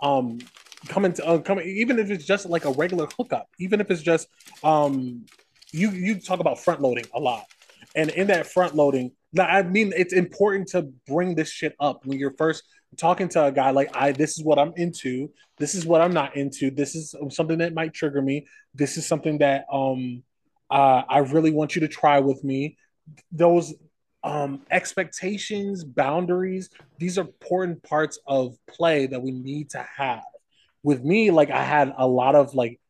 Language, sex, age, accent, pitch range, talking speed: English, male, 20-39, American, 140-170 Hz, 195 wpm